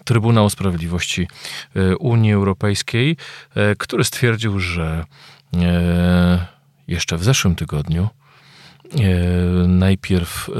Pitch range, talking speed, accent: 90-105 Hz, 70 wpm, native